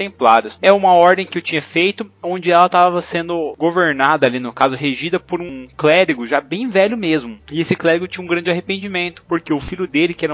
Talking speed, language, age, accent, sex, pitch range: 210 wpm, Portuguese, 20-39, Brazilian, male, 145-195 Hz